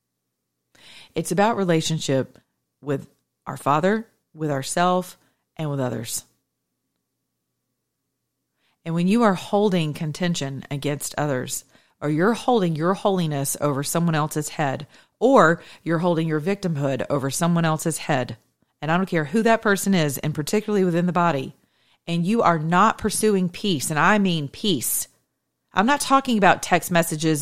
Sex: female